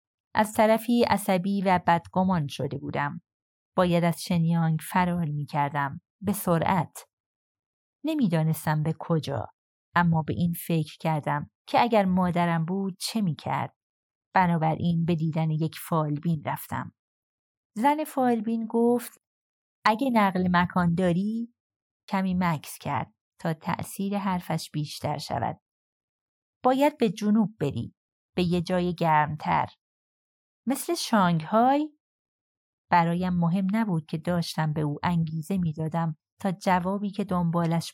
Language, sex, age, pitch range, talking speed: Persian, female, 30-49, 160-205 Hz, 115 wpm